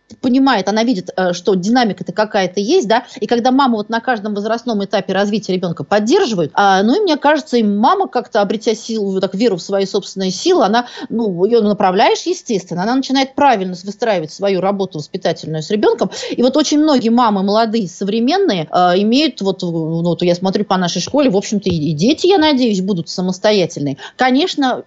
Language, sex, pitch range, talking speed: Russian, female, 190-240 Hz, 175 wpm